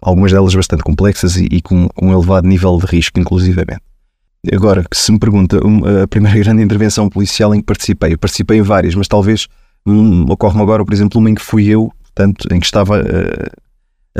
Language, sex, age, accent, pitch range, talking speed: Portuguese, male, 20-39, Portuguese, 90-105 Hz, 205 wpm